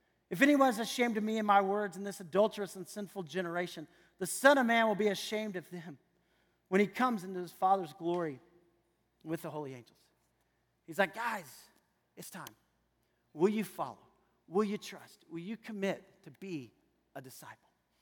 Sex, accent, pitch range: male, American, 175-235 Hz